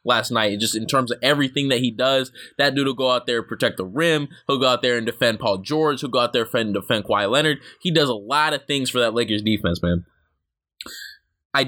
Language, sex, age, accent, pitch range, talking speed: English, male, 20-39, American, 115-150 Hz, 250 wpm